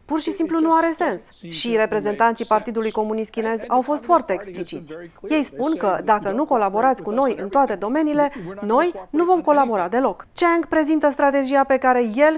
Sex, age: female, 30-49